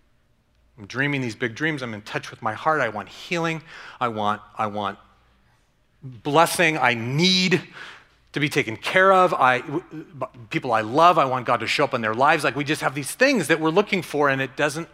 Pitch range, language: 100-130 Hz, English